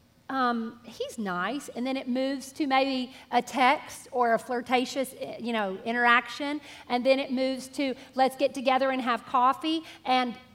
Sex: female